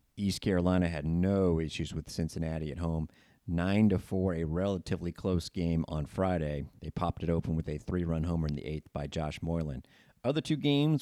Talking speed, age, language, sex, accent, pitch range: 185 wpm, 30-49, English, male, American, 80-105 Hz